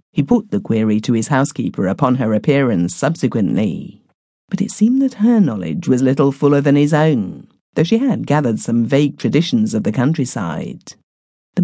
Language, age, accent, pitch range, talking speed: English, 50-69, British, 125-175 Hz, 175 wpm